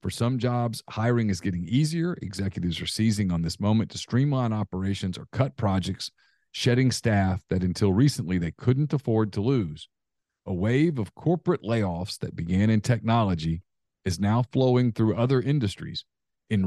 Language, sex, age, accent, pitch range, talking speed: English, male, 40-59, American, 95-120 Hz, 160 wpm